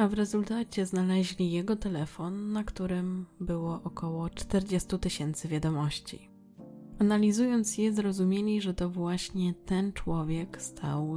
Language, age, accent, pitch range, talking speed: Polish, 20-39, native, 160-200 Hz, 120 wpm